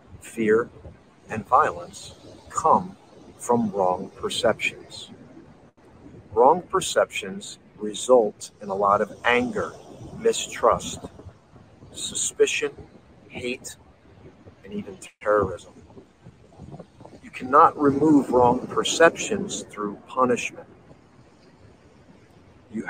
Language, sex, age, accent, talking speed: English, male, 50-69, American, 75 wpm